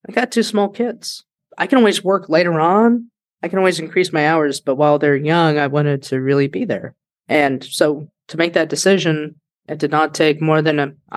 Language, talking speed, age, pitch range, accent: English, 215 wpm, 20-39, 145-180 Hz, American